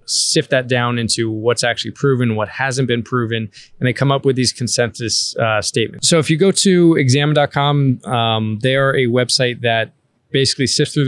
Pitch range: 115-140 Hz